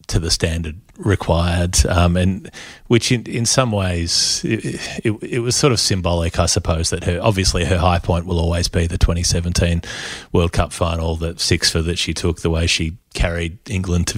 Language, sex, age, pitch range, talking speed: English, male, 30-49, 85-95 Hz, 195 wpm